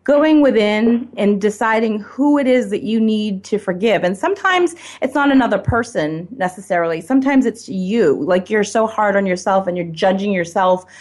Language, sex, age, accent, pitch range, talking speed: English, female, 30-49, American, 175-225 Hz, 175 wpm